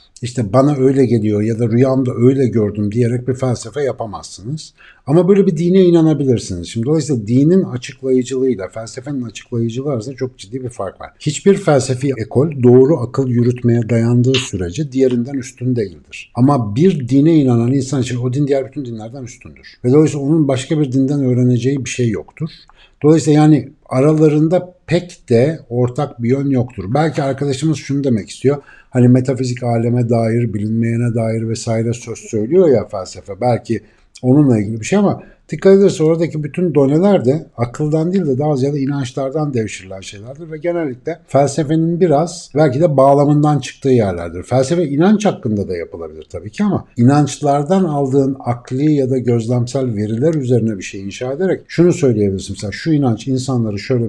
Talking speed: 160 wpm